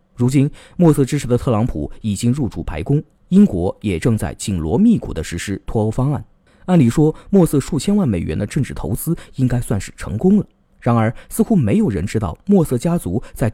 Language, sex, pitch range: Chinese, male, 105-160 Hz